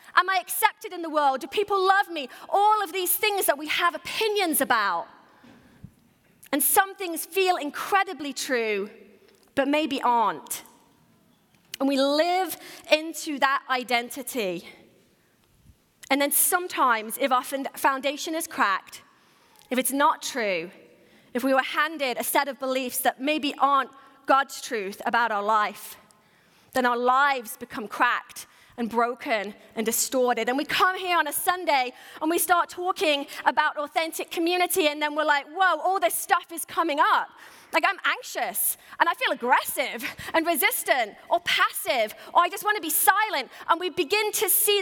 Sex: female